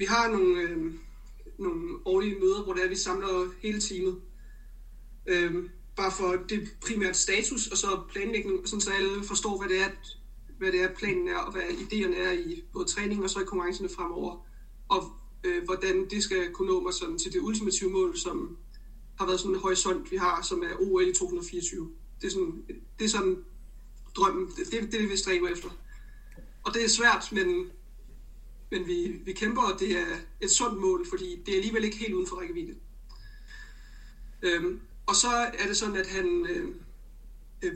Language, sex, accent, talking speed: Danish, male, native, 190 wpm